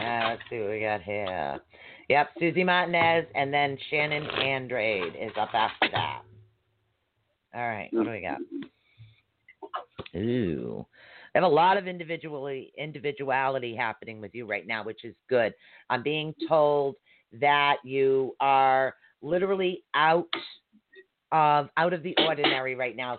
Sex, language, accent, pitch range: female, English, American, 125-155 Hz